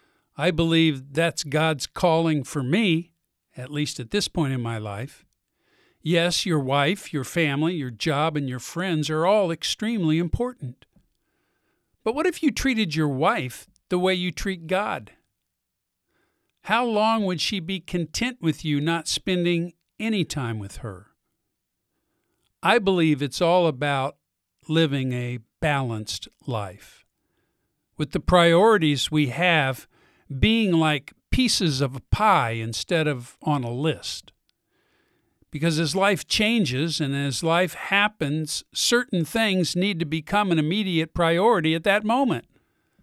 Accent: American